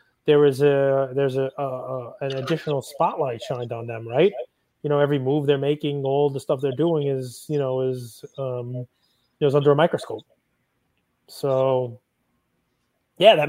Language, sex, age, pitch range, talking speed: English, male, 20-39, 130-150 Hz, 165 wpm